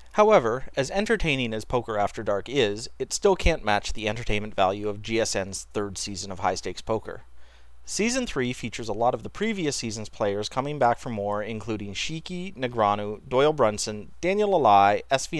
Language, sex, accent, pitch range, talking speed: English, male, American, 100-140 Hz, 170 wpm